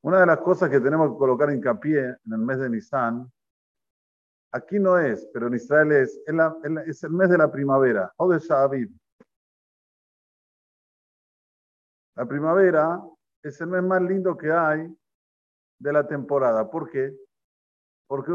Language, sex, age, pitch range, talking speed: Spanish, male, 50-69, 130-170 Hz, 160 wpm